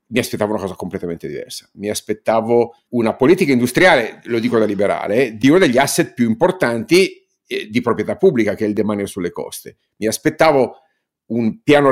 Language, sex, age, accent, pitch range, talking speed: Italian, male, 50-69, native, 105-135 Hz, 170 wpm